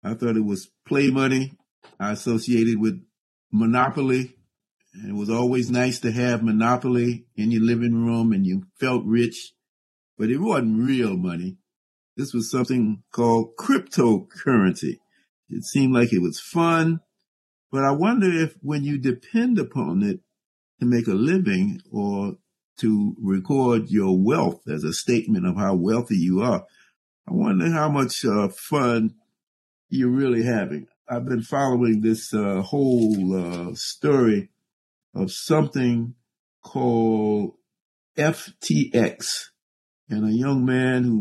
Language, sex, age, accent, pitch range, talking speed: English, male, 50-69, American, 110-135 Hz, 135 wpm